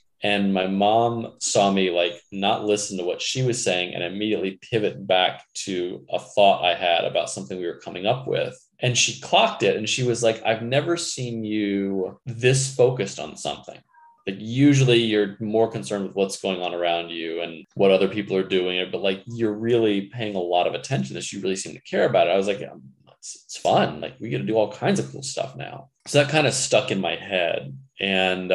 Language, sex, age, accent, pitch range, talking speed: English, male, 20-39, American, 90-110 Hz, 225 wpm